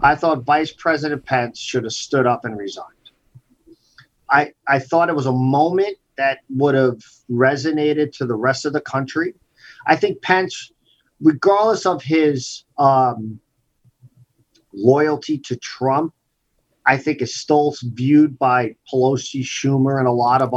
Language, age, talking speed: English, 40-59, 145 wpm